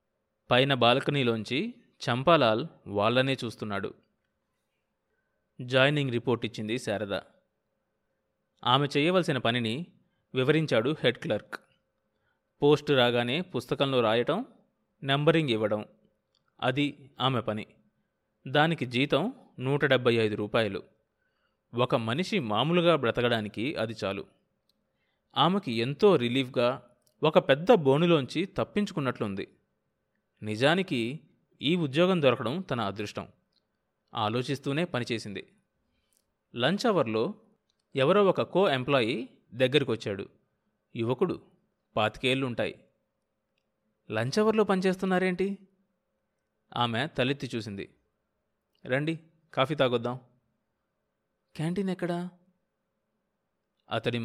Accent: native